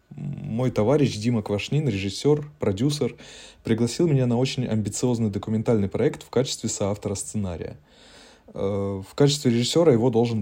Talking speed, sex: 125 wpm, male